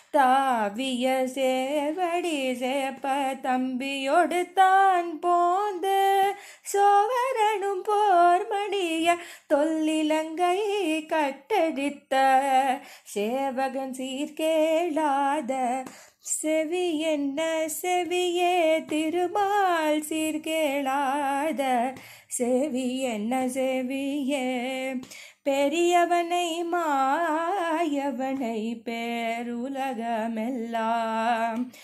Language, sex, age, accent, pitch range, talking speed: Tamil, female, 20-39, native, 255-350 Hz, 45 wpm